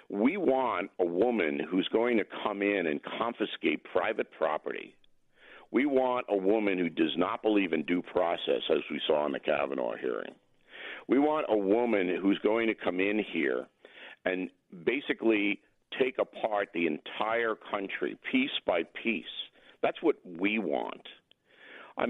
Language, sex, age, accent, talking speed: English, male, 50-69, American, 150 wpm